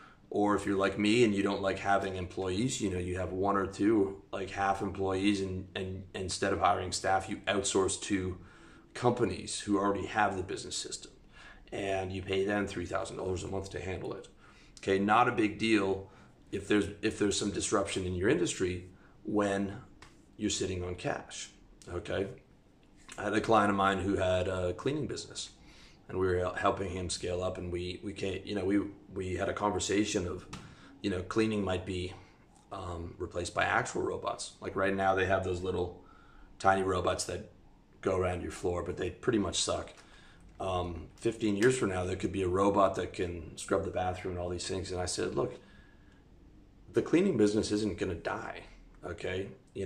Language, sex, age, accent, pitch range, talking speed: English, male, 30-49, American, 90-100 Hz, 190 wpm